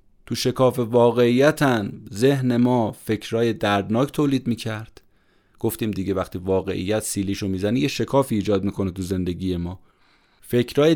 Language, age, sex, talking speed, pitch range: Persian, 30-49, male, 125 wpm, 95-125 Hz